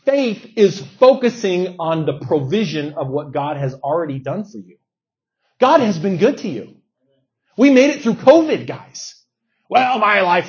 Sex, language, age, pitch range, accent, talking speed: male, English, 30-49, 150-245 Hz, American, 165 wpm